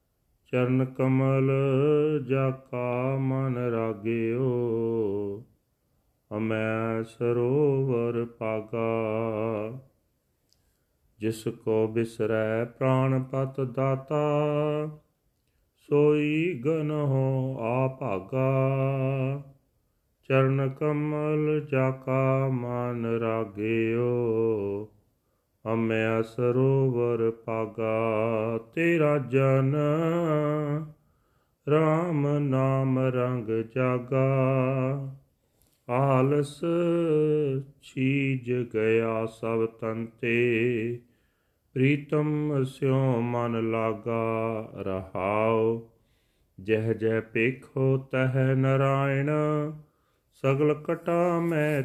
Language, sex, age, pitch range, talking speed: Punjabi, male, 40-59, 115-140 Hz, 55 wpm